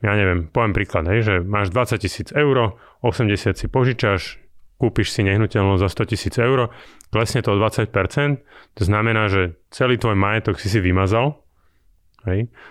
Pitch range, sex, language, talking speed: 100-115 Hz, male, Slovak, 160 wpm